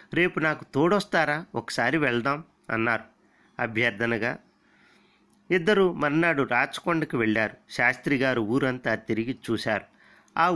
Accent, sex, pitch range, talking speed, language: native, male, 115-170 Hz, 90 wpm, Telugu